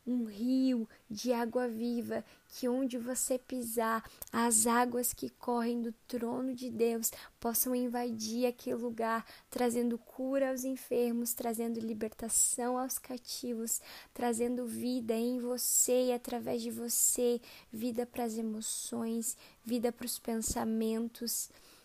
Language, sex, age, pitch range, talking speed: Portuguese, female, 10-29, 230-250 Hz, 125 wpm